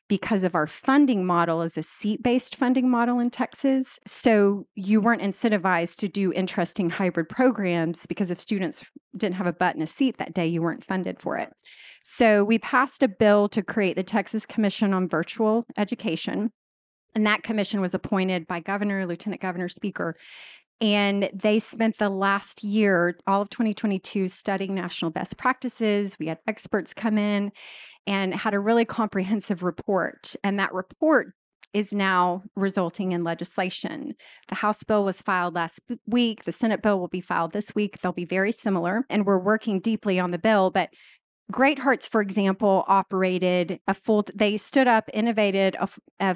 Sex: female